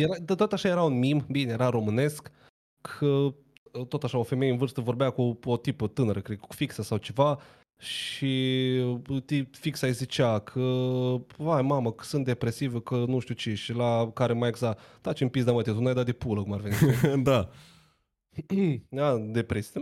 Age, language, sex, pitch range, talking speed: 20-39, Romanian, male, 115-150 Hz, 180 wpm